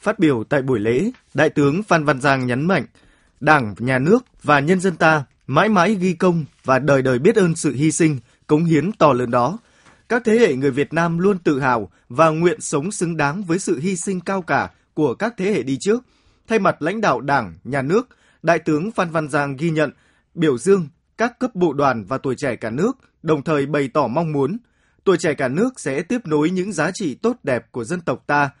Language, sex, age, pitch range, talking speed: Vietnamese, male, 20-39, 140-195 Hz, 230 wpm